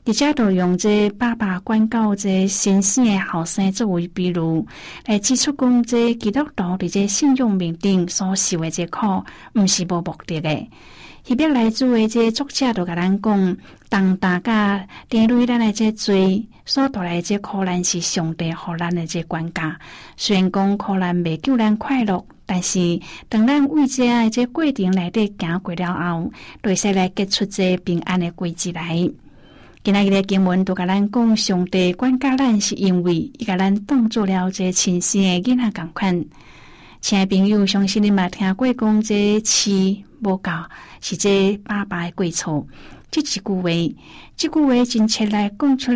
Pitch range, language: 180-225 Hz, Chinese